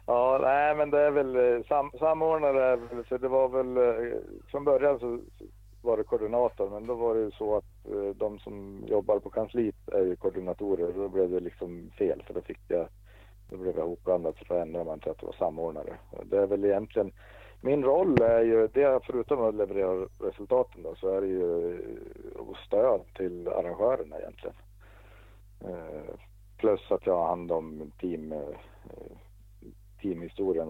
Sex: male